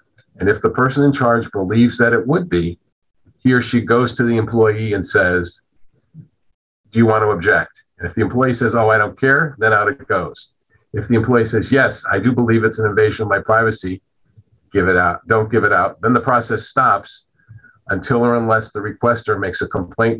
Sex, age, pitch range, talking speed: male, 50-69, 95-120 Hz, 210 wpm